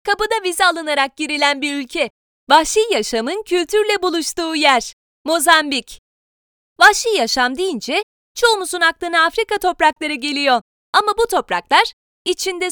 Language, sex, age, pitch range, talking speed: Turkish, female, 30-49, 295-390 Hz, 115 wpm